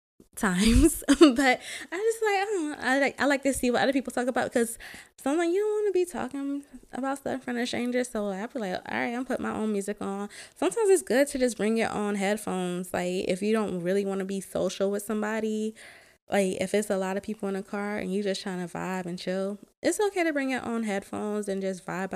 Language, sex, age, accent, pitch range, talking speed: English, female, 20-39, American, 195-250 Hz, 250 wpm